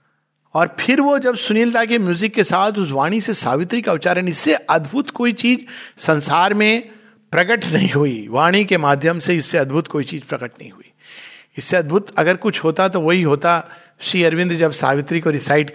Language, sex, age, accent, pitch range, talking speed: Hindi, male, 60-79, native, 145-215 Hz, 185 wpm